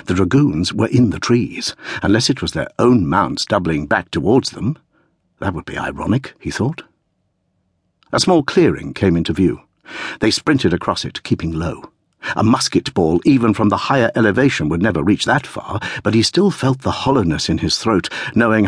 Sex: male